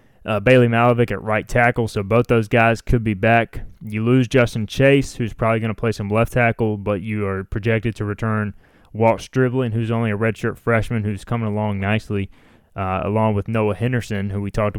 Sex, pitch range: male, 105-120 Hz